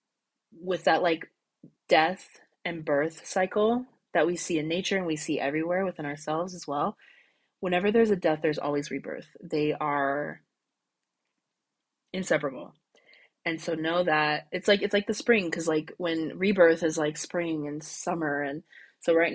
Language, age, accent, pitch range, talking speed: English, 20-39, American, 150-175 Hz, 160 wpm